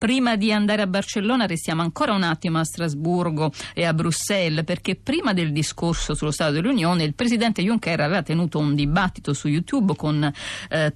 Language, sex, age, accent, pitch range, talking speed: Italian, female, 50-69, native, 155-210 Hz, 175 wpm